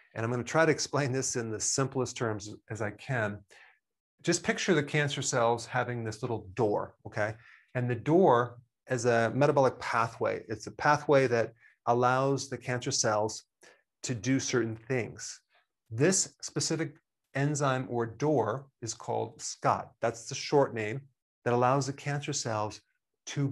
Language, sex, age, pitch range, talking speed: English, male, 40-59, 115-140 Hz, 160 wpm